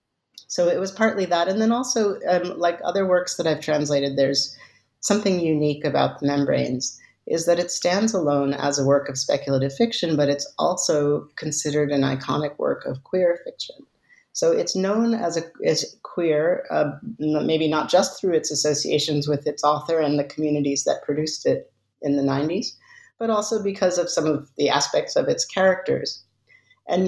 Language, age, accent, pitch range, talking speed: English, 50-69, American, 145-200 Hz, 175 wpm